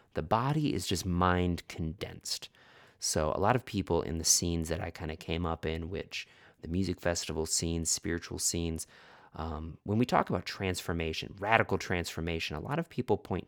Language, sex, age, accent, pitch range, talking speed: English, male, 30-49, American, 80-100 Hz, 185 wpm